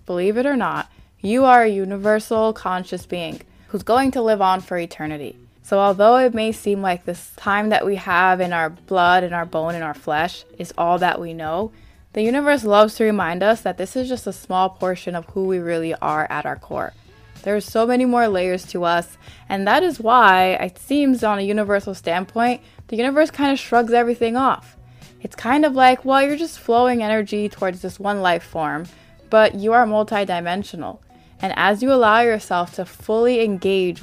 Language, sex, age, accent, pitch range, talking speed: English, female, 20-39, American, 180-230 Hz, 200 wpm